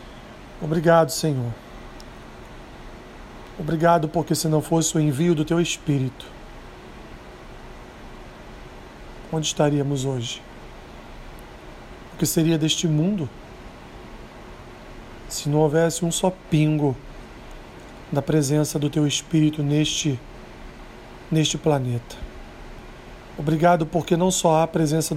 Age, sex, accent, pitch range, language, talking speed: 40-59, male, Brazilian, 135-170 Hz, Portuguese, 100 wpm